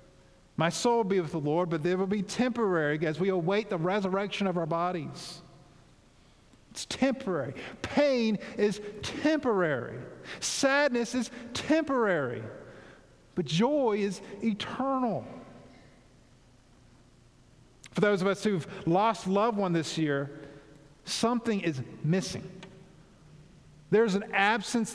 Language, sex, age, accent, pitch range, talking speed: English, male, 50-69, American, 160-205 Hz, 115 wpm